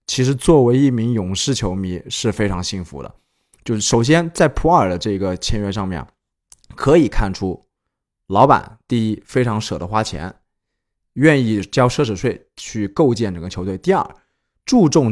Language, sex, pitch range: Chinese, male, 100-145 Hz